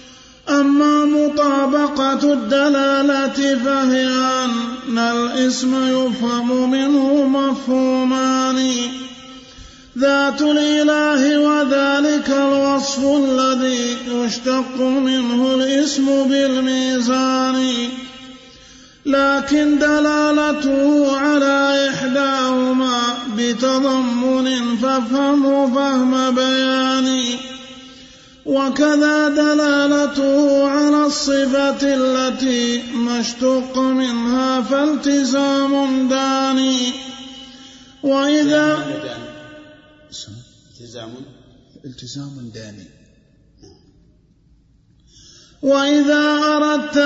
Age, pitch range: 30-49, 255-280 Hz